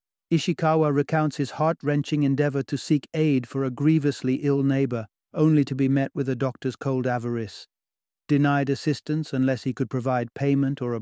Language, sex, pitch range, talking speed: English, male, 130-150 Hz, 170 wpm